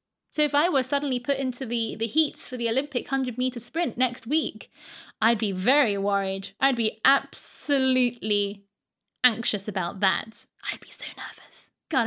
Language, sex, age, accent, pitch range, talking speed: English, female, 20-39, British, 225-295 Hz, 160 wpm